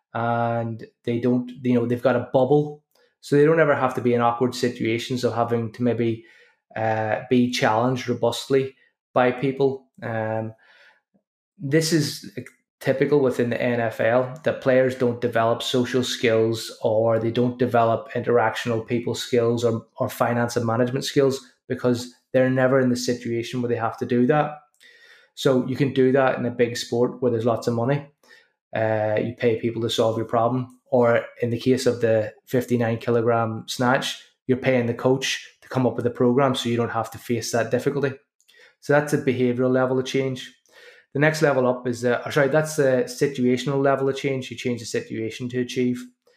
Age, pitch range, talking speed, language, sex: 20-39, 120-130 Hz, 185 wpm, English, male